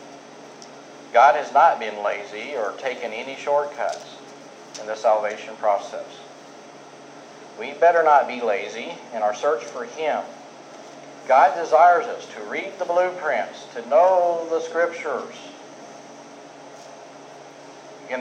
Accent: American